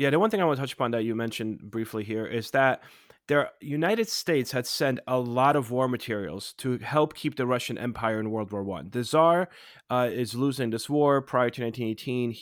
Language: English